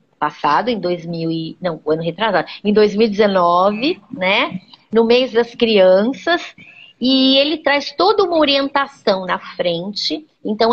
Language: Portuguese